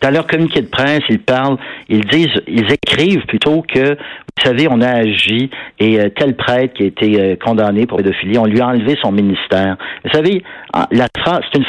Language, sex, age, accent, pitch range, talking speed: French, male, 50-69, French, 105-130 Hz, 195 wpm